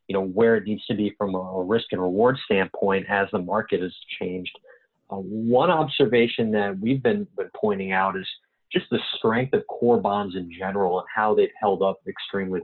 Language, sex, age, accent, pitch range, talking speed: English, male, 30-49, American, 95-125 Hz, 200 wpm